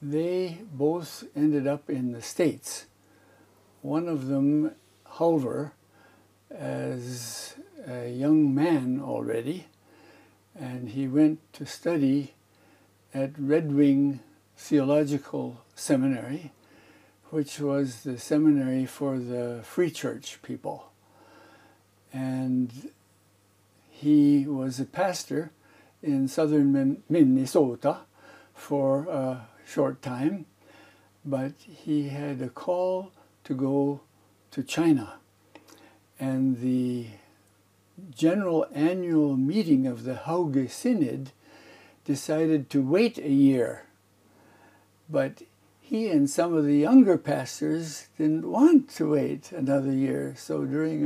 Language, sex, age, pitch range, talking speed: English, male, 60-79, 125-155 Hz, 100 wpm